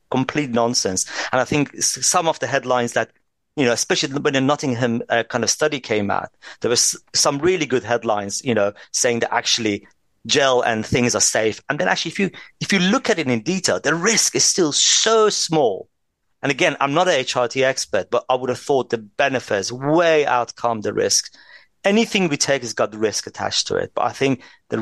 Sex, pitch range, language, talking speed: male, 120-160 Hz, English, 215 wpm